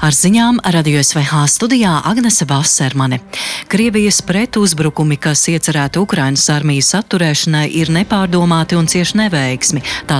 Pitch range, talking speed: 145-185 Hz, 125 wpm